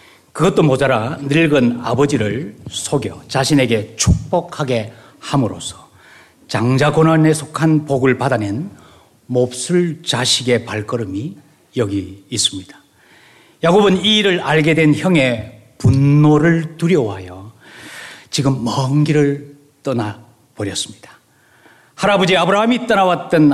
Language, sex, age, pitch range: Korean, male, 40-59, 120-165 Hz